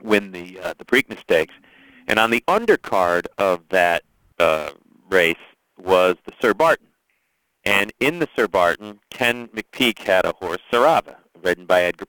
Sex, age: male, 40-59